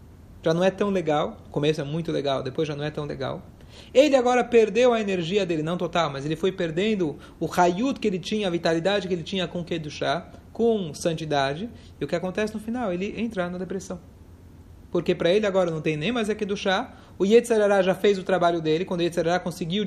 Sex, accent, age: male, Brazilian, 30-49